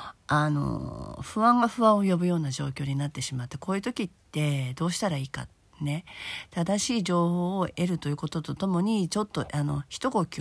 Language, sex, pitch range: Japanese, female, 145-210 Hz